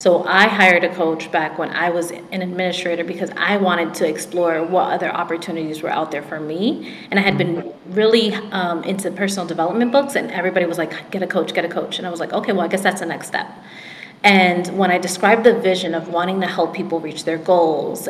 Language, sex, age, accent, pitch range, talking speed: English, female, 30-49, American, 175-210 Hz, 230 wpm